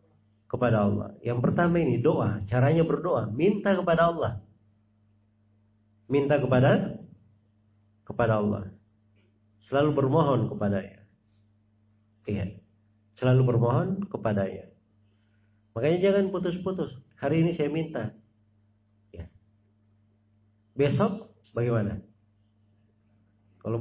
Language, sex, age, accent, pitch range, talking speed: Indonesian, male, 40-59, native, 105-140 Hz, 85 wpm